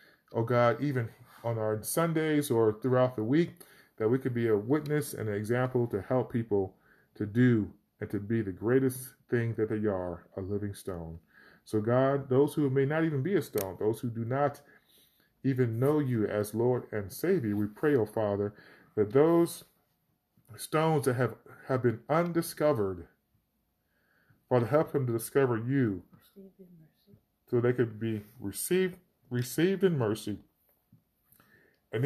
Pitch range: 105-135 Hz